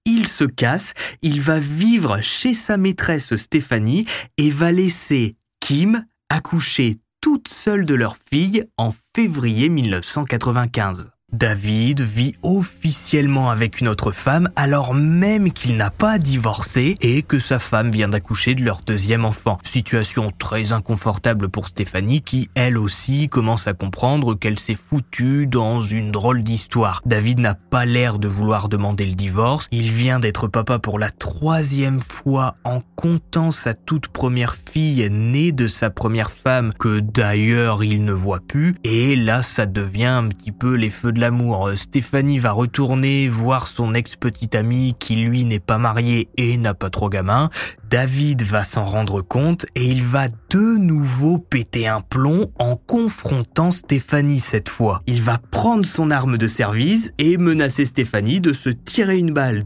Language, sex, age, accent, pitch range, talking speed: French, male, 20-39, French, 110-145 Hz, 160 wpm